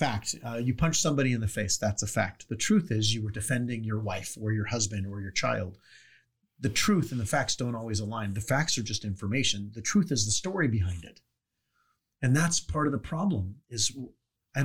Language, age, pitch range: English, 40-59, 105-140 Hz